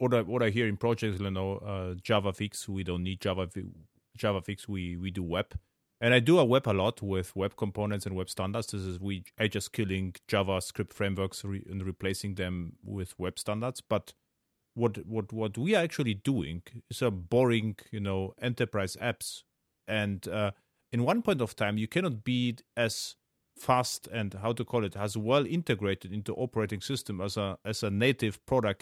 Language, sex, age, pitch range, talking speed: English, male, 30-49, 95-120 Hz, 200 wpm